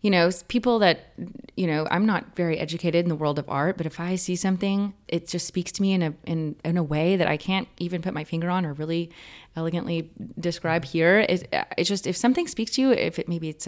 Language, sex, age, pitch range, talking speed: English, female, 30-49, 155-190 Hz, 245 wpm